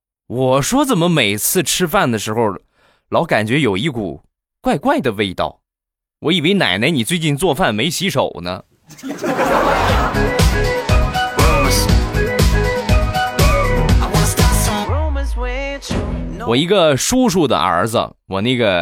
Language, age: Chinese, 20-39